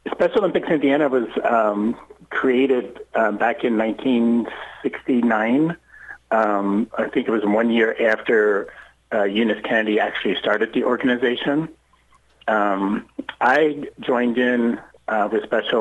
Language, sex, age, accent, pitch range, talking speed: English, male, 40-59, American, 105-135 Hz, 120 wpm